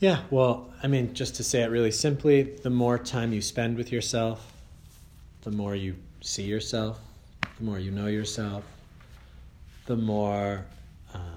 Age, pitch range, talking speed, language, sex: 30-49, 85-115 Hz, 160 wpm, English, male